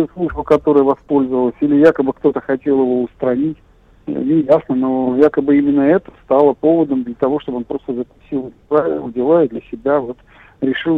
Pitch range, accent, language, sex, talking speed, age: 130-155 Hz, native, Russian, male, 165 wpm, 50-69